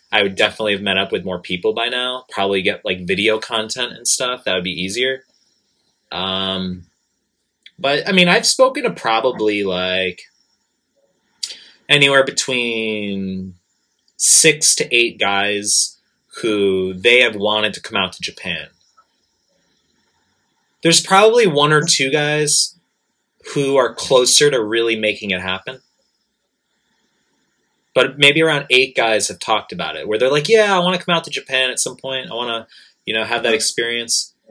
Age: 30-49